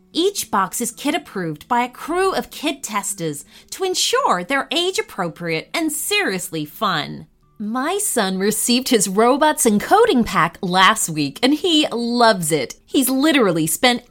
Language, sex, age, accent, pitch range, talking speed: English, female, 30-49, American, 185-315 Hz, 145 wpm